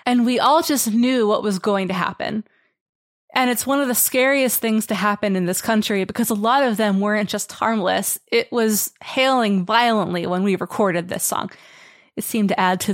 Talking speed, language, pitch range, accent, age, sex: 210 wpm, English, 180-220 Hz, American, 20-39, female